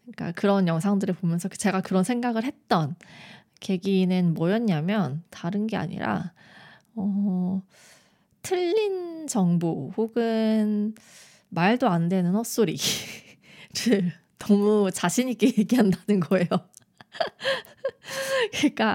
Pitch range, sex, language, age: 175-215 Hz, female, Korean, 20-39